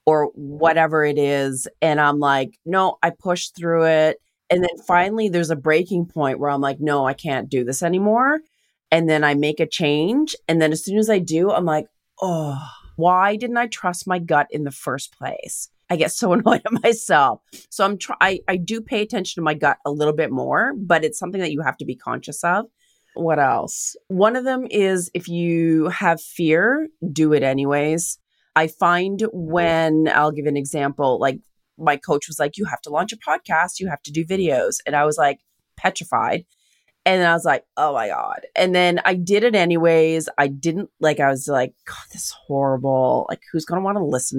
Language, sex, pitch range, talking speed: English, female, 145-190 Hz, 210 wpm